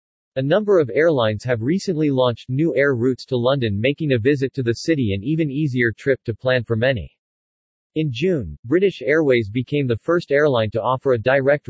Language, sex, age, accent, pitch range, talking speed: English, male, 40-59, American, 115-145 Hz, 195 wpm